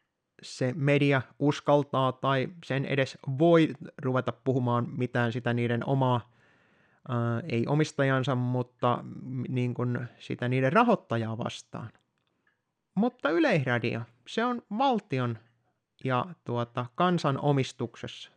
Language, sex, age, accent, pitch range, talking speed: Finnish, male, 30-49, native, 120-175 Hz, 105 wpm